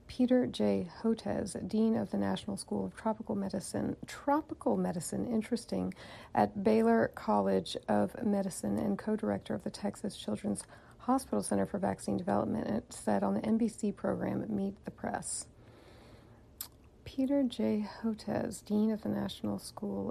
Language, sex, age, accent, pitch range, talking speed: English, female, 40-59, American, 195-240 Hz, 140 wpm